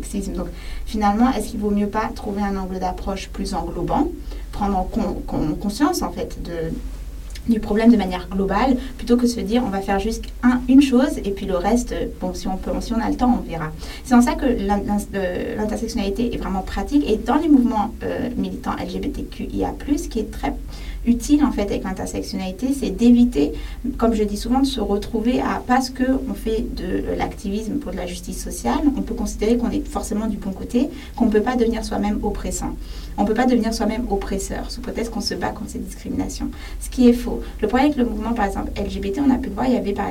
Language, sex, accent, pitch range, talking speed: English, female, French, 205-250 Hz, 225 wpm